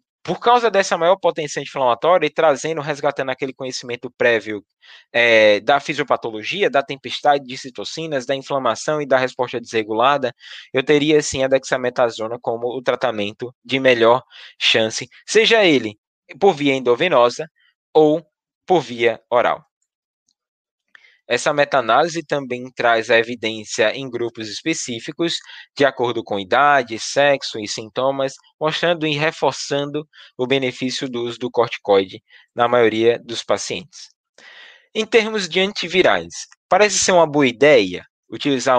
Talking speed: 130 wpm